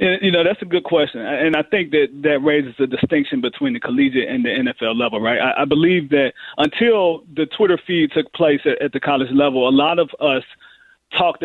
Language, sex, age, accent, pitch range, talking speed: English, male, 30-49, American, 140-200 Hz, 220 wpm